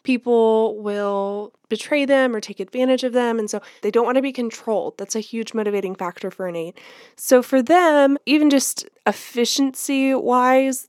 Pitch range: 200-245 Hz